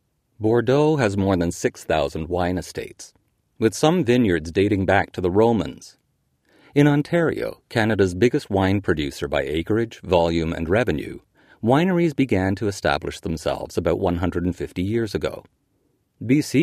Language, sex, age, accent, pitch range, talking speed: English, male, 40-59, American, 90-115 Hz, 130 wpm